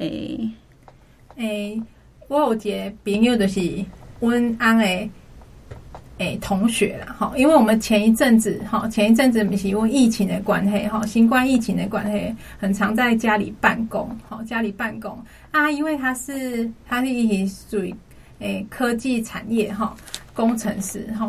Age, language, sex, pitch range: 30-49, Chinese, female, 210-235 Hz